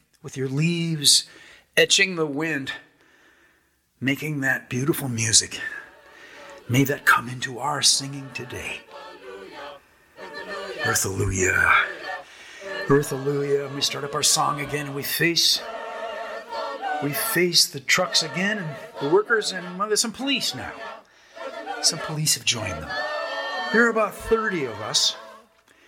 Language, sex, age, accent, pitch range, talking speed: English, male, 50-69, American, 150-240 Hz, 125 wpm